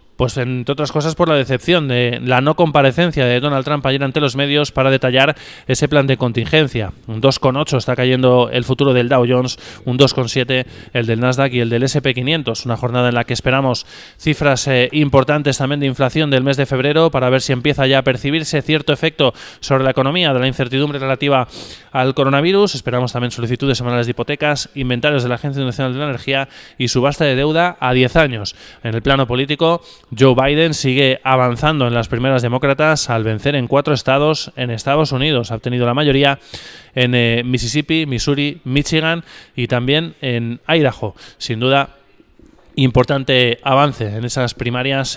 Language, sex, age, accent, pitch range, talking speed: Spanish, male, 20-39, Spanish, 125-145 Hz, 180 wpm